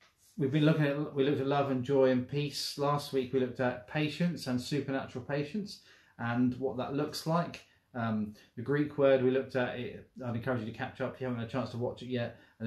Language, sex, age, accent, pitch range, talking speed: English, male, 30-49, British, 105-125 Hz, 240 wpm